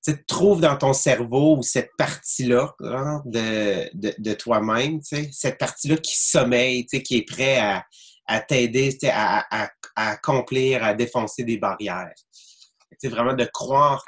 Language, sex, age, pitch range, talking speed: English, male, 30-49, 105-130 Hz, 150 wpm